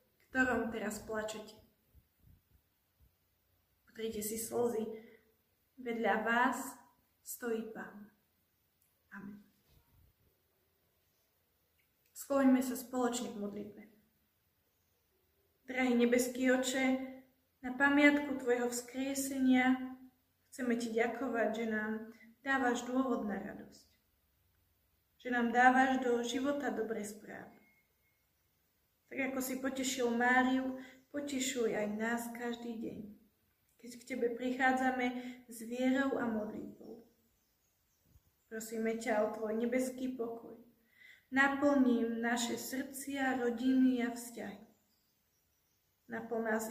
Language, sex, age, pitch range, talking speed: Slovak, female, 20-39, 220-255 Hz, 90 wpm